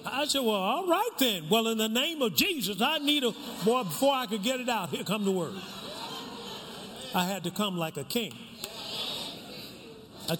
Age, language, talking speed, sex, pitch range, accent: 50-69, English, 195 wpm, male, 215-260 Hz, American